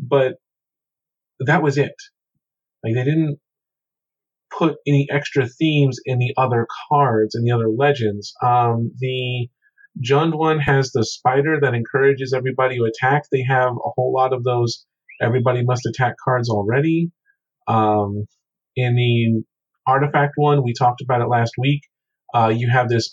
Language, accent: English, American